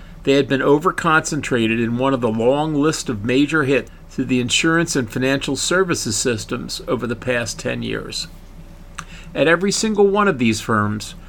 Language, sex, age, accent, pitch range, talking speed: English, male, 50-69, American, 110-145 Hz, 170 wpm